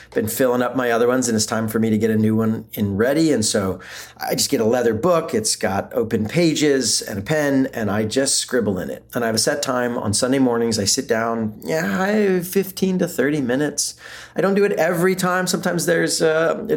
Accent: American